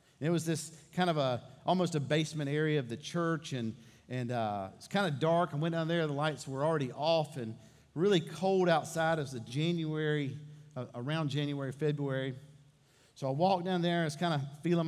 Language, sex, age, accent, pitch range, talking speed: English, male, 50-69, American, 140-170 Hz, 210 wpm